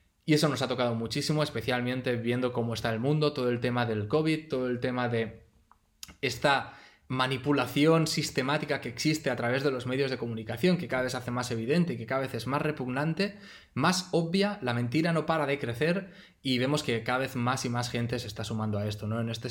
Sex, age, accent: male, 20-39, Spanish